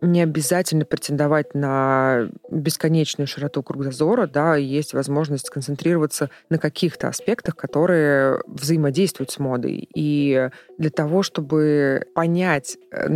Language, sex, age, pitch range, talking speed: Russian, female, 20-39, 140-170 Hz, 105 wpm